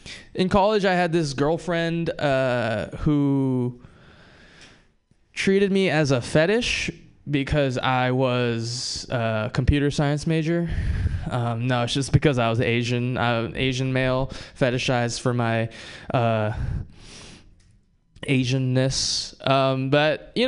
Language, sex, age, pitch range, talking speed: English, male, 20-39, 125-170 Hz, 115 wpm